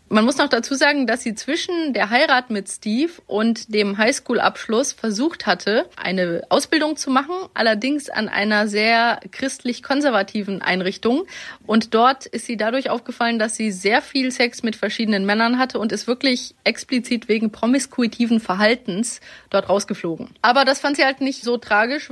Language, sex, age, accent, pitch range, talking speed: German, female, 30-49, German, 205-255 Hz, 160 wpm